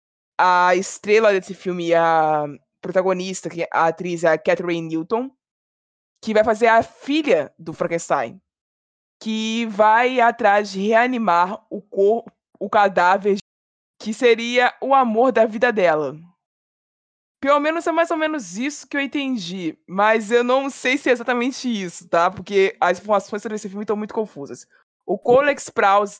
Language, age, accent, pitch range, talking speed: Portuguese, 20-39, Brazilian, 180-235 Hz, 150 wpm